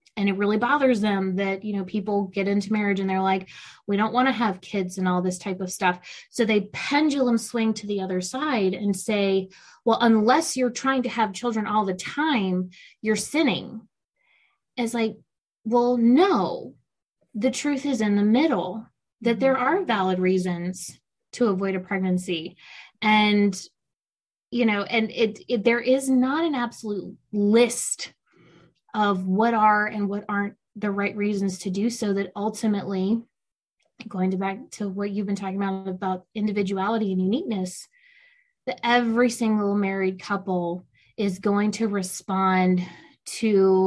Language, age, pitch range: English, 20-39, 195-235 Hz